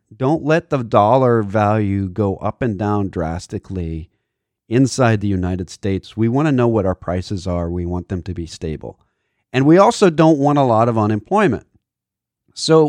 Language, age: English, 40-59